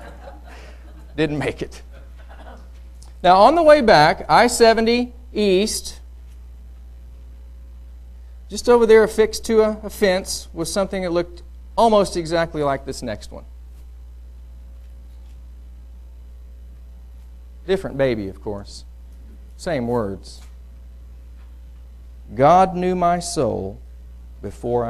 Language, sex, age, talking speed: English, male, 40-59, 95 wpm